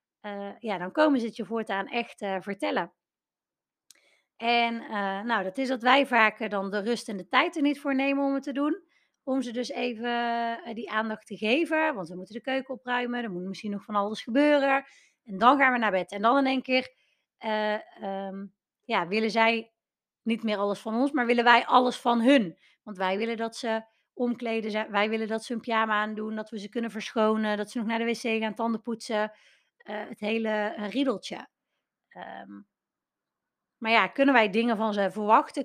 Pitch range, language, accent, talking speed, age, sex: 215-260 Hz, Dutch, Dutch, 205 wpm, 30-49, female